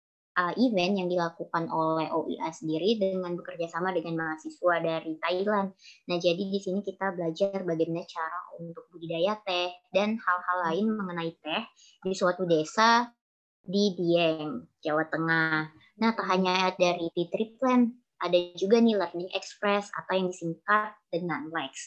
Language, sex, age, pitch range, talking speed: Indonesian, male, 20-39, 165-205 Hz, 140 wpm